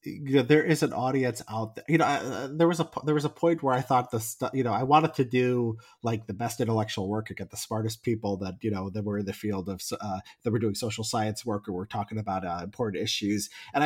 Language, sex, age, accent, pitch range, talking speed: English, male, 30-49, American, 105-135 Hz, 275 wpm